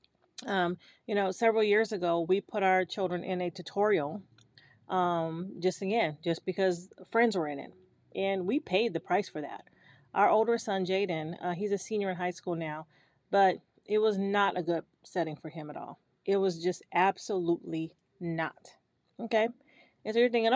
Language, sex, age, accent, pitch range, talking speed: English, female, 30-49, American, 175-205 Hz, 180 wpm